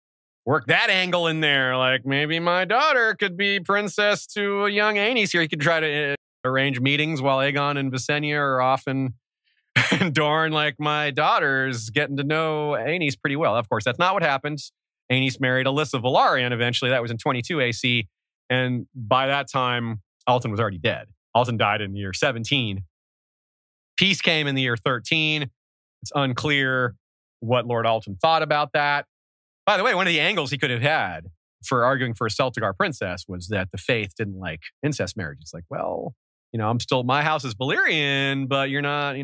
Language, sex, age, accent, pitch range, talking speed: English, male, 30-49, American, 120-160 Hz, 190 wpm